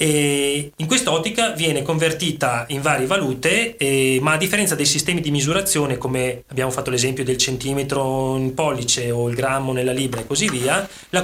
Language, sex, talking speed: Italian, male, 175 wpm